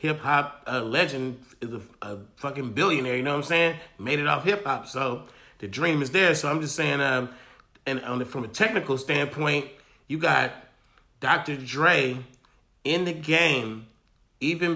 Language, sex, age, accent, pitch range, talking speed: English, male, 30-49, American, 140-170 Hz, 170 wpm